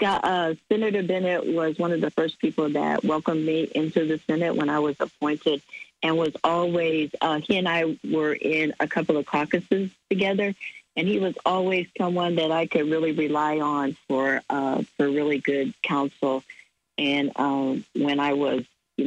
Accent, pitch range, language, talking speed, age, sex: American, 140-160 Hz, English, 175 wpm, 50-69, female